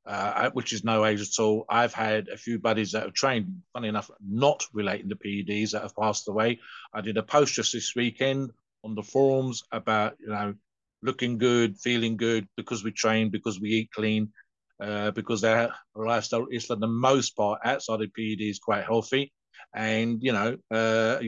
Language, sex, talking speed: English, male, 190 wpm